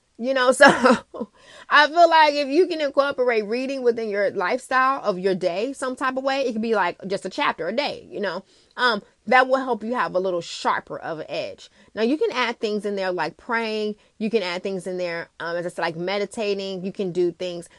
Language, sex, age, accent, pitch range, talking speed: English, female, 20-39, American, 175-240 Hz, 235 wpm